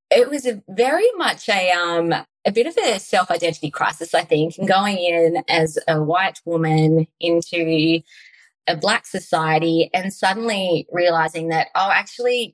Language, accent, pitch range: English, Australian, 165-200 Hz